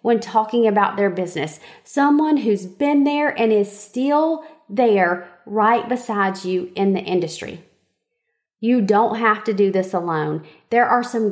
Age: 30-49